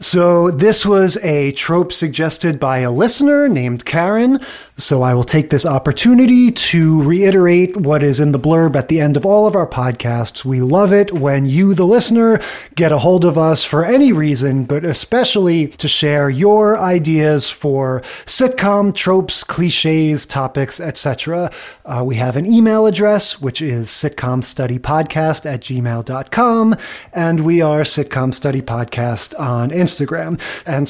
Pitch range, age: 145-185 Hz, 30-49